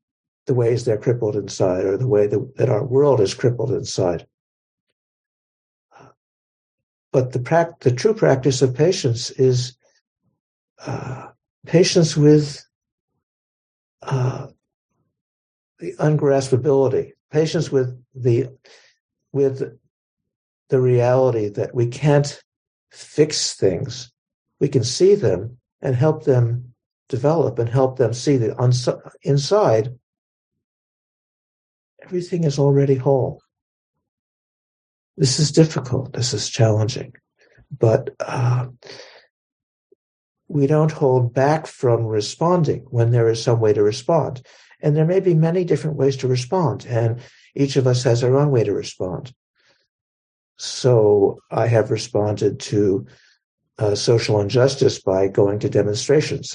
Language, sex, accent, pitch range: English, male, American, 120-145 Hz